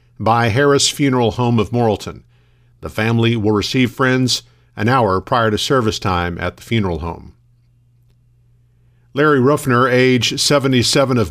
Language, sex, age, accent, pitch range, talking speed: English, male, 50-69, American, 115-130 Hz, 140 wpm